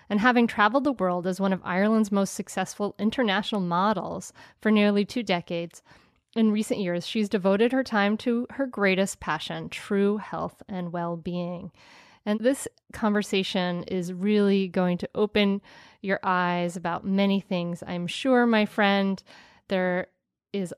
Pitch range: 180-225 Hz